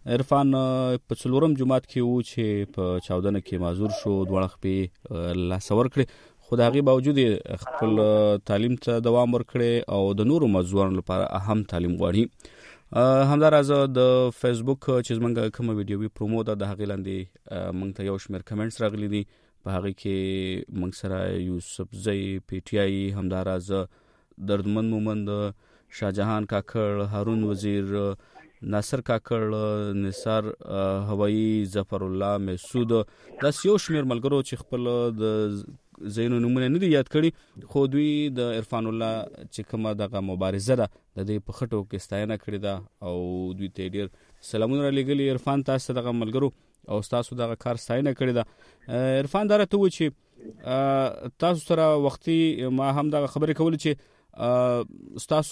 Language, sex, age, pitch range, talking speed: Urdu, male, 30-49, 100-130 Hz, 150 wpm